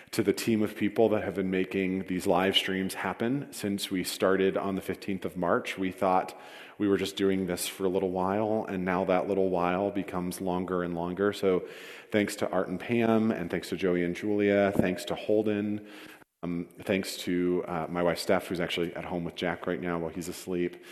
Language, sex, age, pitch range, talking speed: English, male, 40-59, 90-100 Hz, 210 wpm